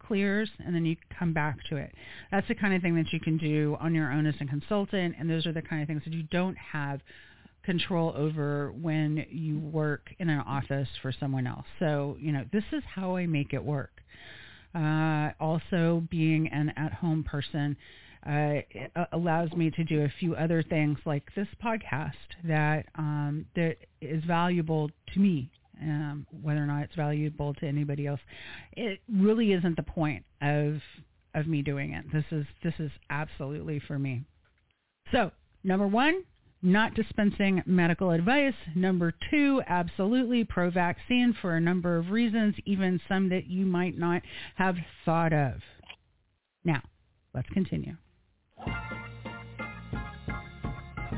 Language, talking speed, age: English, 155 wpm, 40-59